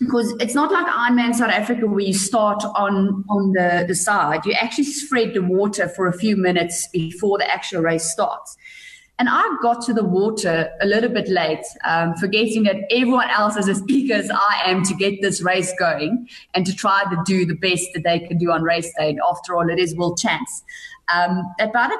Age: 30-49